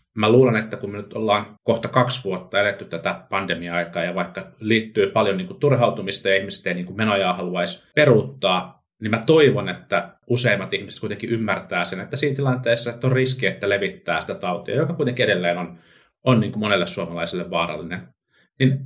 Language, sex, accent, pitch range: Finnish, male, native, 90-120 Hz